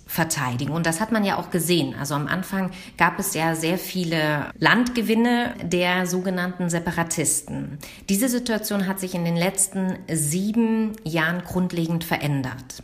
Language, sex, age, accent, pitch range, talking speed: German, female, 40-59, German, 160-210 Hz, 145 wpm